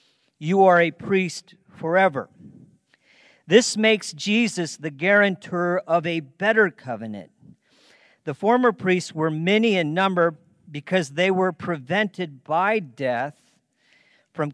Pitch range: 150-195 Hz